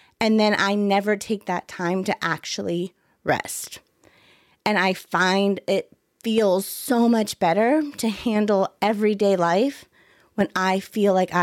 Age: 30-49